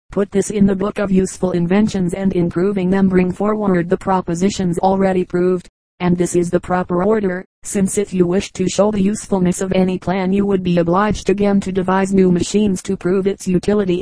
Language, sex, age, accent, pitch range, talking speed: English, female, 40-59, American, 180-195 Hz, 205 wpm